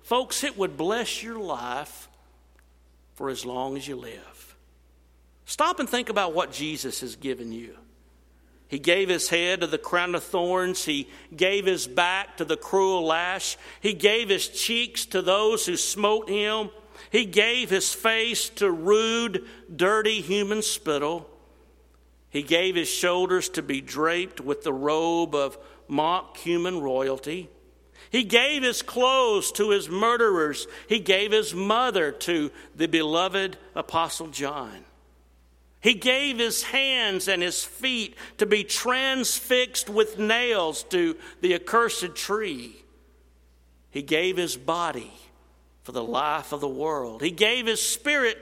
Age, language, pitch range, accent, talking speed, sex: 50-69, English, 135-220 Hz, American, 145 wpm, male